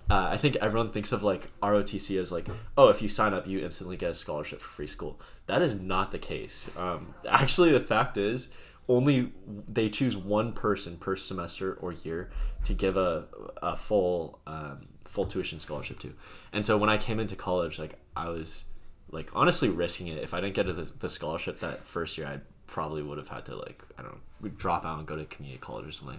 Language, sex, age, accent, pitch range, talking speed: English, male, 20-39, American, 80-100 Hz, 215 wpm